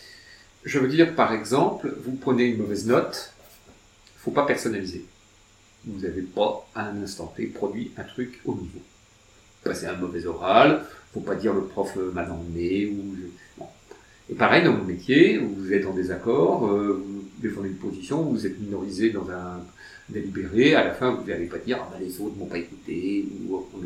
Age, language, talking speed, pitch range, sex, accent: 50-69, French, 190 wpm, 100-120 Hz, male, French